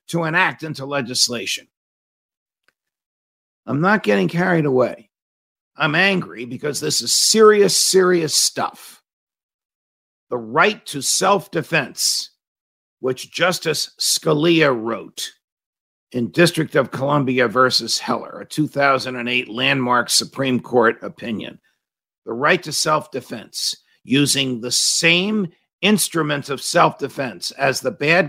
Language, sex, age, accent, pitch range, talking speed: English, male, 50-69, American, 125-165 Hz, 110 wpm